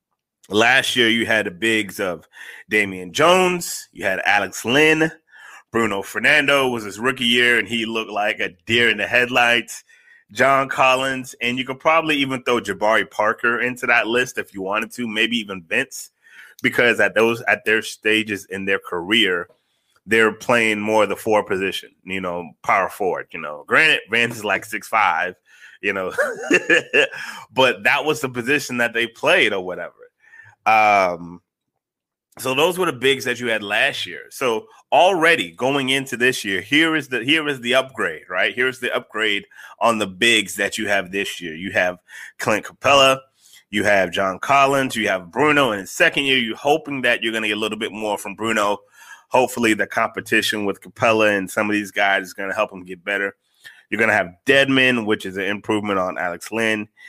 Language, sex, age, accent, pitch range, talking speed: English, male, 30-49, American, 100-130 Hz, 185 wpm